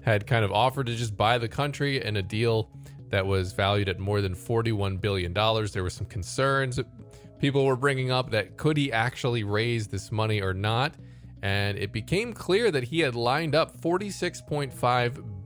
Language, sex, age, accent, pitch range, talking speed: English, male, 20-39, American, 100-130 Hz, 185 wpm